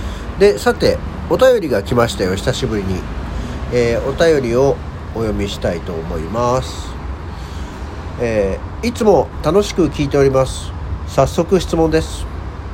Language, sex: Japanese, male